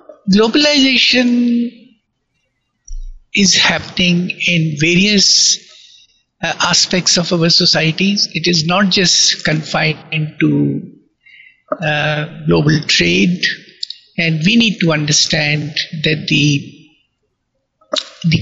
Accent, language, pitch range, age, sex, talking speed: Indian, English, 155-200 Hz, 60-79, male, 90 wpm